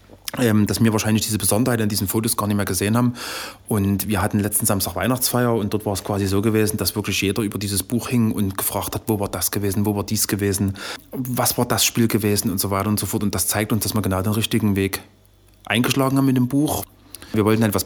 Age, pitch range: 30-49, 100-115 Hz